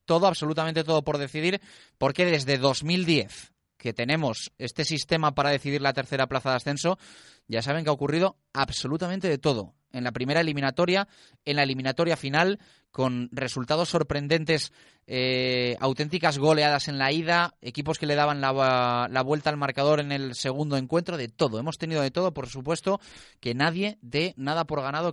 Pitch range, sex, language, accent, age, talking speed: 130-165 Hz, male, Spanish, Spanish, 30-49, 170 wpm